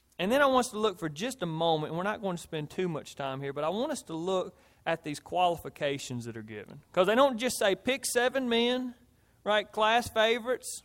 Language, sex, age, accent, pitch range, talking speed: English, male, 40-59, American, 150-220 Hz, 245 wpm